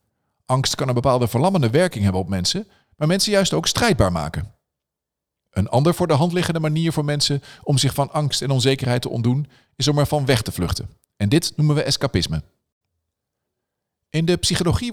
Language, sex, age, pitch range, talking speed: Dutch, male, 50-69, 105-155 Hz, 185 wpm